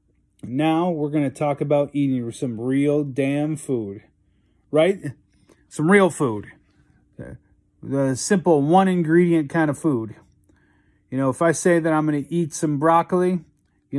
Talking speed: 145 wpm